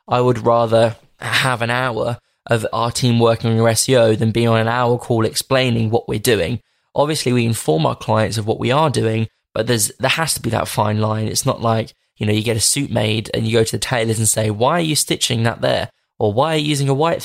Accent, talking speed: British, 255 wpm